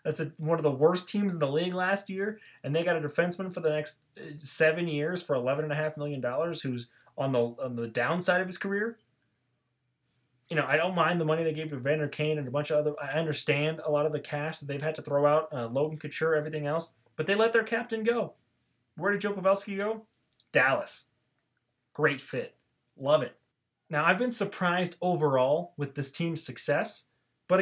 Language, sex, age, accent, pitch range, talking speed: English, male, 20-39, American, 140-190 Hz, 205 wpm